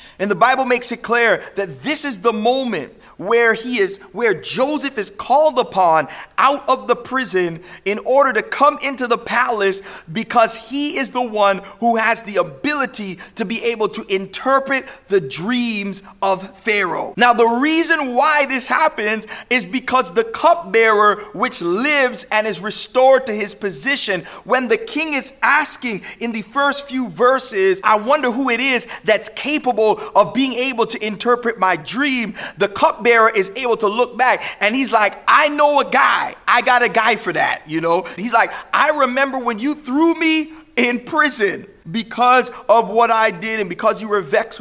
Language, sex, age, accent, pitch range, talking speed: English, male, 30-49, American, 205-260 Hz, 180 wpm